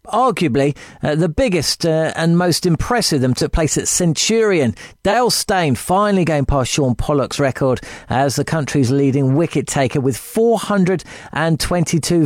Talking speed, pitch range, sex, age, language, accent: 140 wpm, 145-200 Hz, male, 40-59, English, British